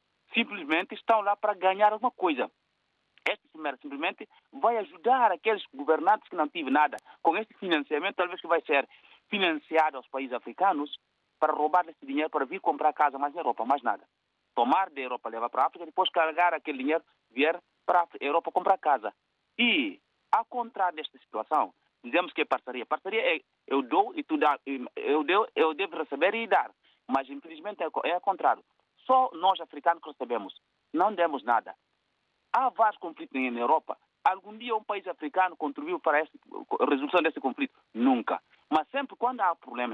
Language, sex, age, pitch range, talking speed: Portuguese, male, 40-59, 155-240 Hz, 175 wpm